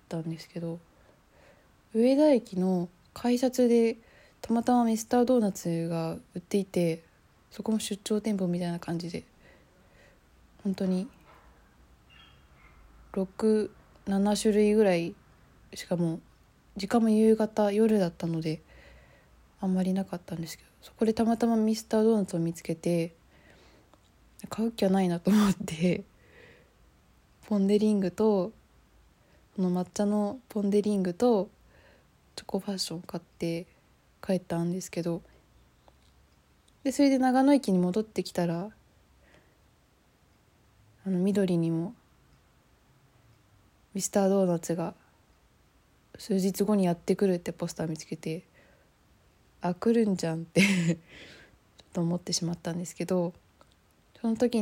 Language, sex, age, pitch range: Japanese, female, 20-39, 170-215 Hz